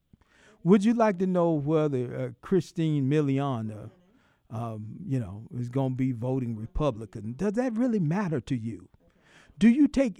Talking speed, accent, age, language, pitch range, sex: 160 wpm, American, 50-69, English, 135-205 Hz, male